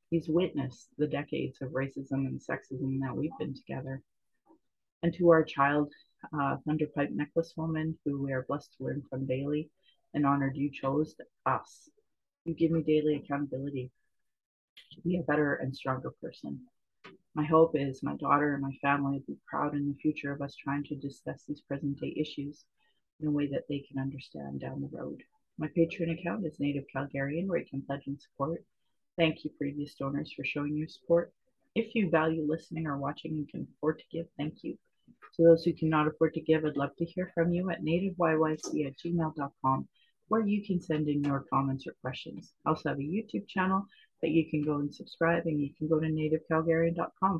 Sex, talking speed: female, 195 wpm